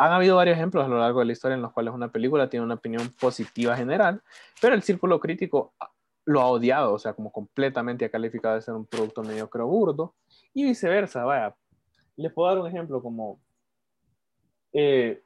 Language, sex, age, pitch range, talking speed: Spanish, male, 20-39, 115-145 Hz, 195 wpm